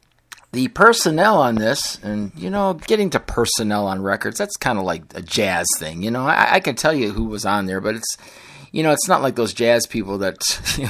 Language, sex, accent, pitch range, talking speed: English, male, American, 105-135 Hz, 230 wpm